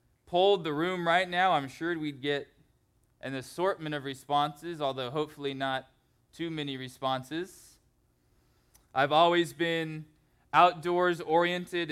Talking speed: 115 wpm